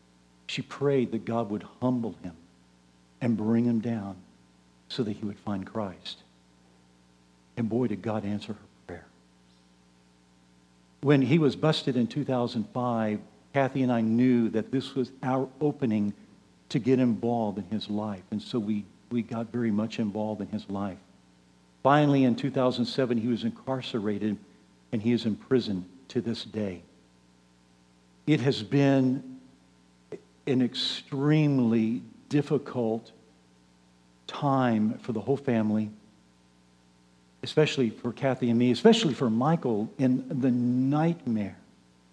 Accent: American